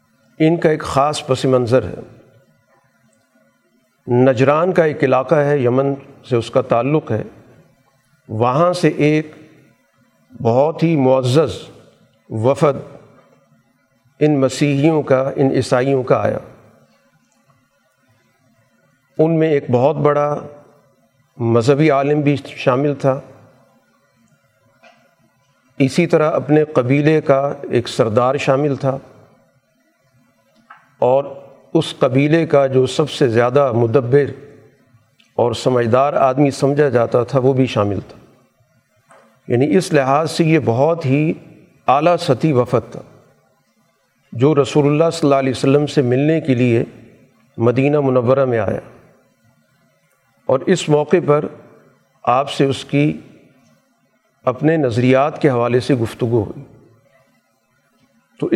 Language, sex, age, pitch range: Urdu, male, 50-69, 130-150 Hz